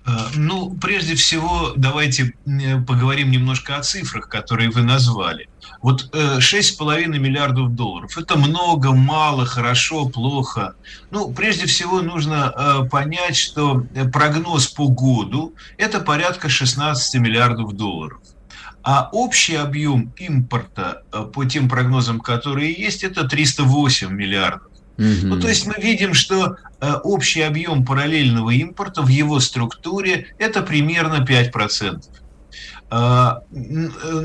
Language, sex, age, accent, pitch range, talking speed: Russian, male, 50-69, native, 125-155 Hz, 110 wpm